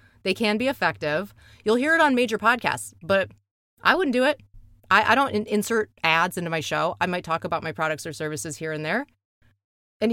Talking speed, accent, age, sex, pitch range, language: 205 wpm, American, 30-49, female, 155-225 Hz, English